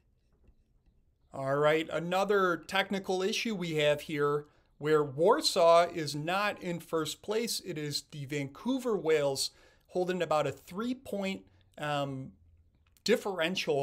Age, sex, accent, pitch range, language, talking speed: 40-59, male, American, 145-195 Hz, English, 115 wpm